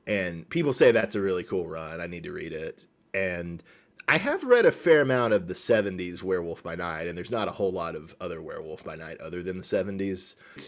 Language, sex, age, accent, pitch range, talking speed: English, male, 30-49, American, 90-120 Hz, 235 wpm